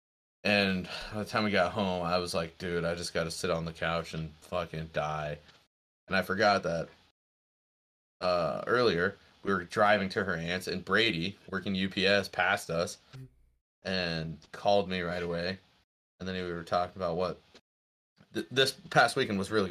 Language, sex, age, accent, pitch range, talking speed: English, male, 20-39, American, 85-100 Hz, 175 wpm